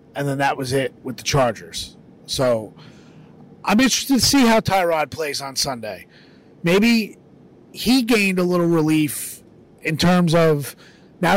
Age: 30-49